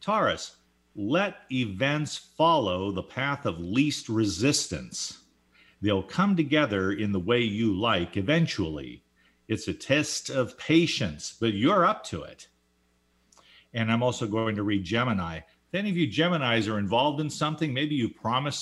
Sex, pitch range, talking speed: male, 100-150 Hz, 150 wpm